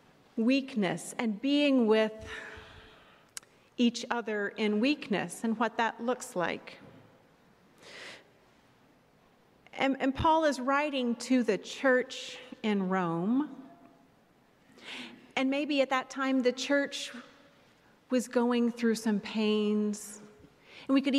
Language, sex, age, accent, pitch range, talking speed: English, female, 40-59, American, 205-260 Hz, 110 wpm